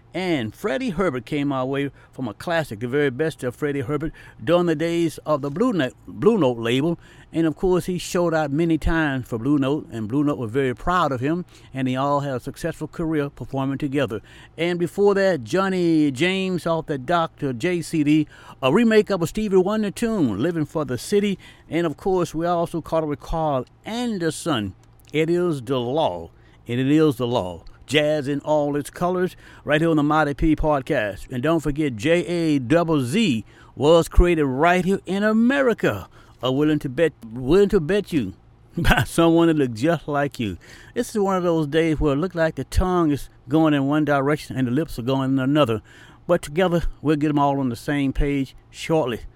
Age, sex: 60-79, male